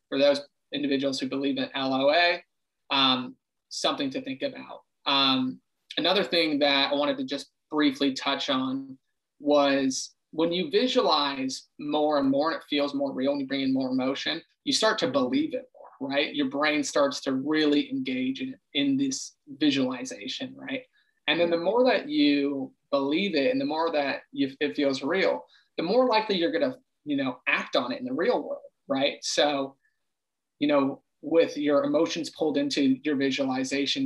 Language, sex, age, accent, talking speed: English, male, 30-49, American, 180 wpm